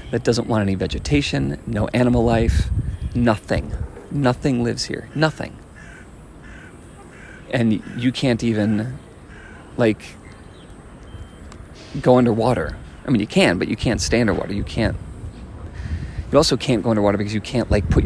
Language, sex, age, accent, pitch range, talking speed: English, male, 40-59, American, 90-115 Hz, 135 wpm